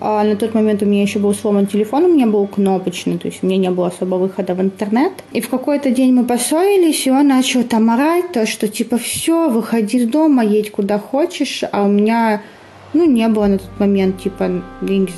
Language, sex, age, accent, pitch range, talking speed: Russian, female, 20-39, native, 205-260 Hz, 215 wpm